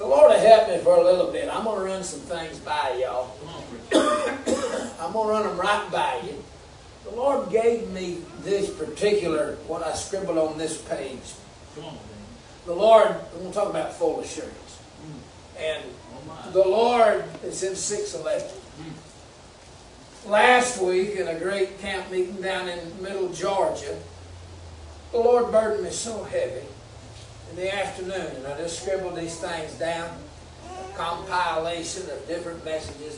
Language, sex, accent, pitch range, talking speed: English, male, American, 160-215 Hz, 150 wpm